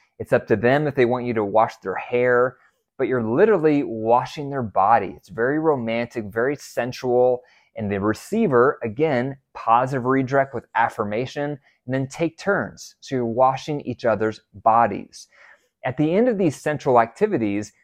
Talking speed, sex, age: 160 wpm, male, 20-39